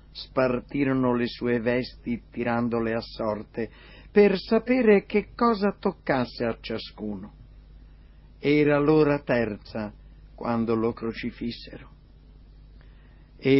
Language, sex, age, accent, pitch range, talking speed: Italian, male, 50-69, native, 120-195 Hz, 95 wpm